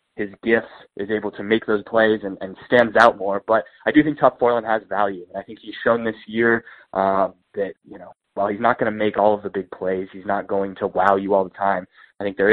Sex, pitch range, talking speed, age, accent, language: male, 95-115 Hz, 265 wpm, 20-39, American, English